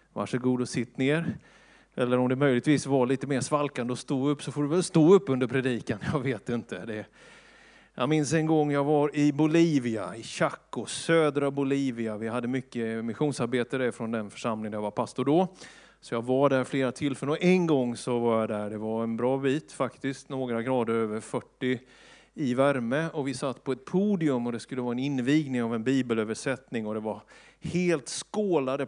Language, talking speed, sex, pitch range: Swedish, 205 wpm, male, 120-145 Hz